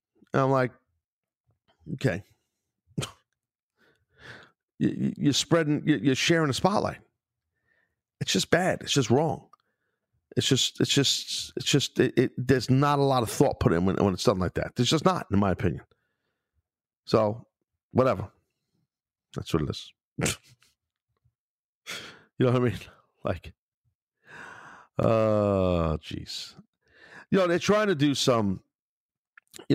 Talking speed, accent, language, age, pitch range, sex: 135 wpm, American, English, 50-69, 100-140 Hz, male